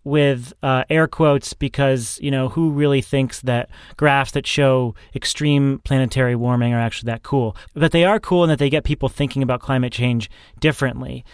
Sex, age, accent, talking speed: male, 30-49, American, 185 wpm